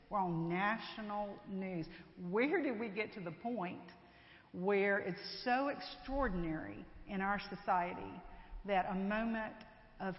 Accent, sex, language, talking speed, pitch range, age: American, female, English, 130 wpm, 180-230 Hz, 50-69